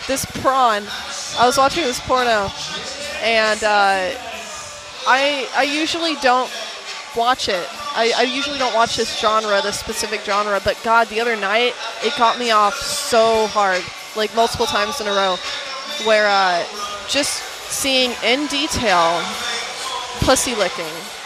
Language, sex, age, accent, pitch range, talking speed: English, female, 20-39, American, 210-250 Hz, 140 wpm